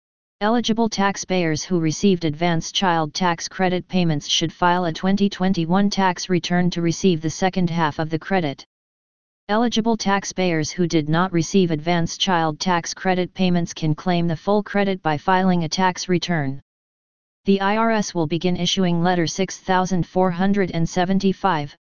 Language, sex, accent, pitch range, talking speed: English, female, American, 165-190 Hz, 140 wpm